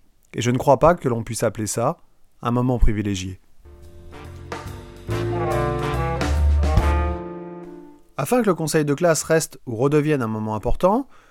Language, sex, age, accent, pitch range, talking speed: French, male, 30-49, French, 110-150 Hz, 135 wpm